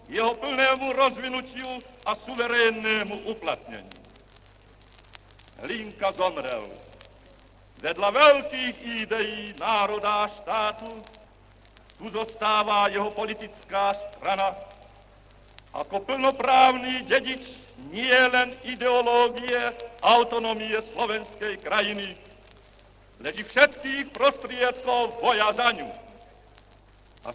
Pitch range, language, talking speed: 205-255 Hz, Czech, 70 wpm